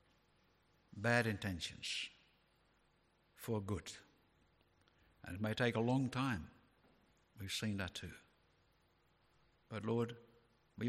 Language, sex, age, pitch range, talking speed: English, male, 60-79, 100-120 Hz, 100 wpm